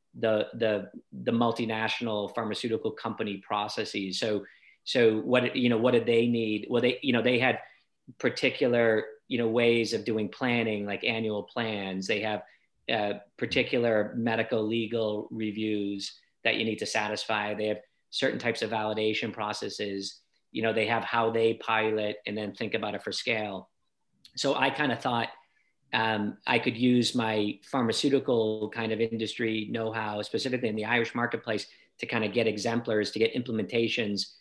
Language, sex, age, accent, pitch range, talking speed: English, male, 40-59, American, 105-115 Hz, 160 wpm